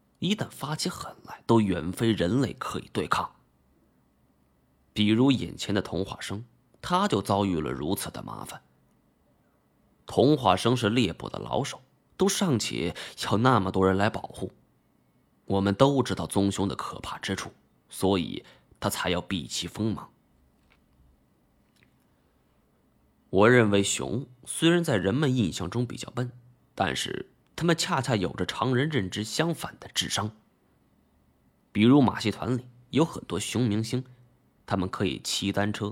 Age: 20-39